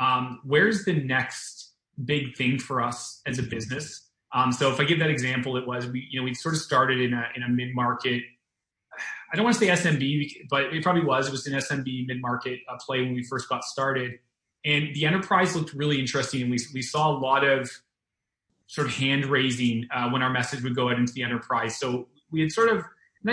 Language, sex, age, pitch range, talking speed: English, male, 30-49, 120-140 Hz, 225 wpm